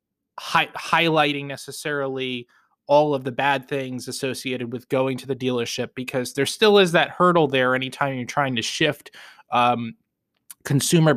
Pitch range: 125-145 Hz